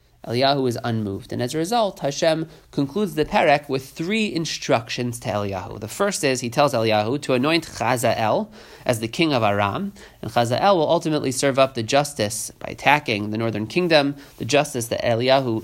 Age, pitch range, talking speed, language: 30-49, 110-145 Hz, 180 wpm, English